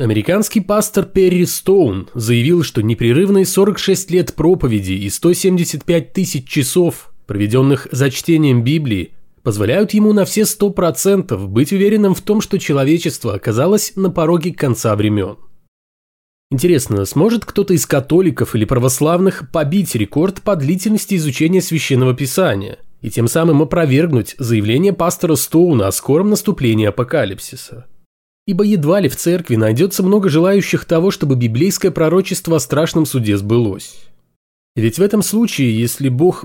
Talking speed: 135 wpm